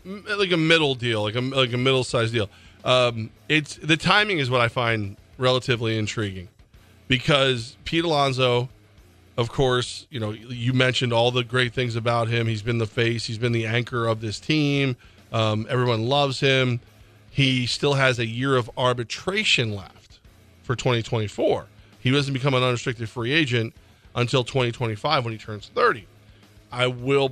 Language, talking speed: English, 165 wpm